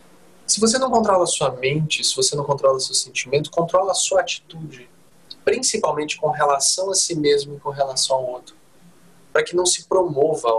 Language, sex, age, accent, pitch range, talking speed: Portuguese, male, 20-39, Brazilian, 130-185 Hz, 195 wpm